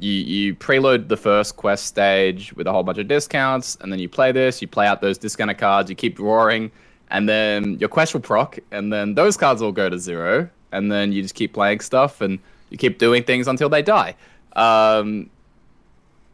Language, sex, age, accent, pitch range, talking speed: English, male, 20-39, Australian, 100-130 Hz, 210 wpm